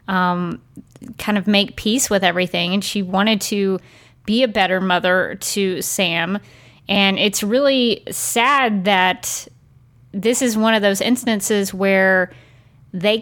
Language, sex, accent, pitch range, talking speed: English, female, American, 180-220 Hz, 135 wpm